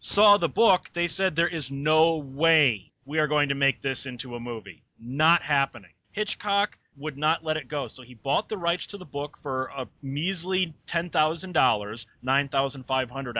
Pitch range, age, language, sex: 135-180 Hz, 30-49, English, male